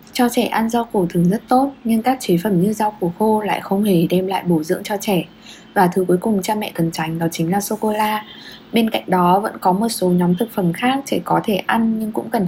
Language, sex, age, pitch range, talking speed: Vietnamese, female, 10-29, 180-230 Hz, 275 wpm